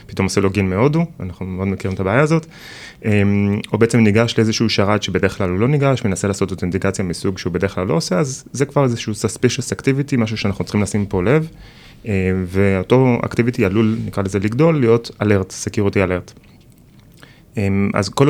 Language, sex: Hebrew, male